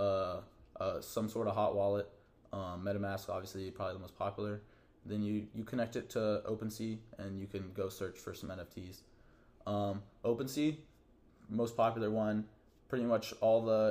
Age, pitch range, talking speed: 20-39, 100-115 Hz, 165 wpm